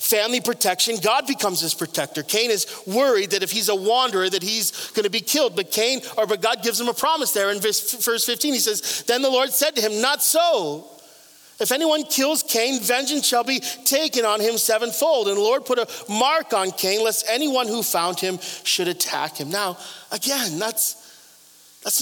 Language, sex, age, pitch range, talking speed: English, male, 40-59, 205-265 Hz, 200 wpm